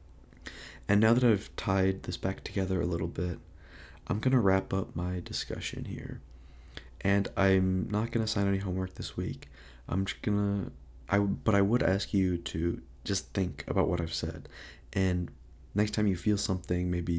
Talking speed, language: 180 wpm, English